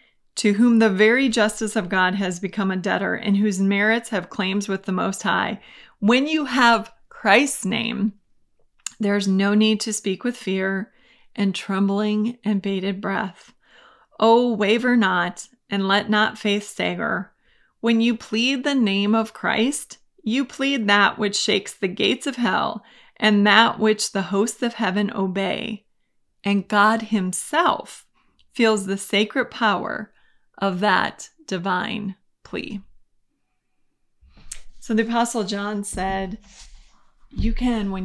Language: English